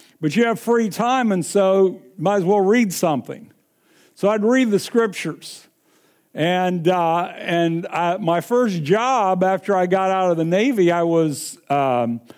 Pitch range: 165-200 Hz